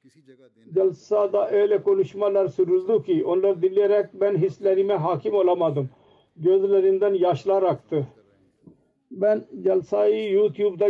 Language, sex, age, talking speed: Turkish, male, 50-69, 100 wpm